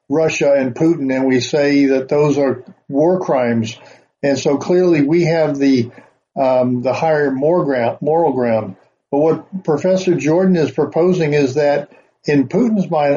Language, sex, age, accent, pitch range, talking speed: English, male, 50-69, American, 135-160 Hz, 150 wpm